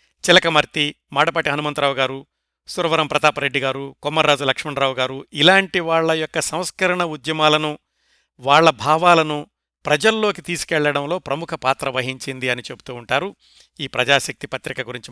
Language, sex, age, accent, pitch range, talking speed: Telugu, male, 60-79, native, 140-180 Hz, 115 wpm